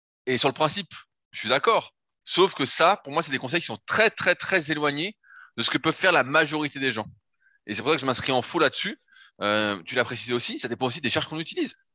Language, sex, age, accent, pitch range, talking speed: French, male, 20-39, French, 120-170 Hz, 260 wpm